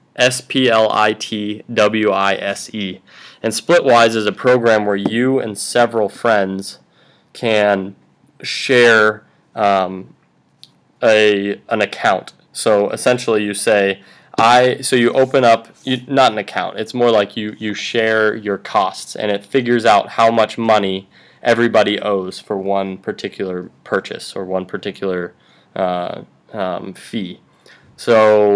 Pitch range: 95-110 Hz